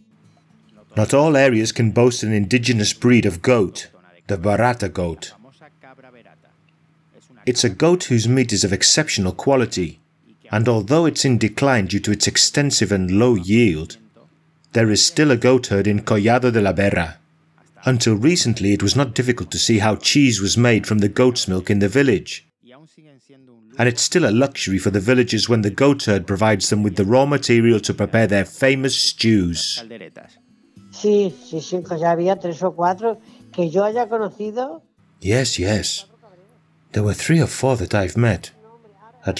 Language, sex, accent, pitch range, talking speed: Spanish, male, British, 100-140 Hz, 150 wpm